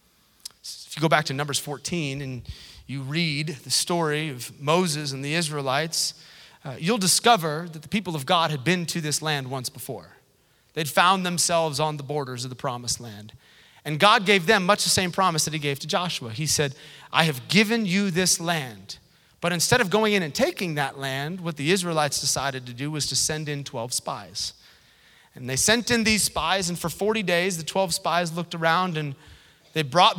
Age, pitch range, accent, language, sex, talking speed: 30-49, 140-175 Hz, American, English, male, 200 wpm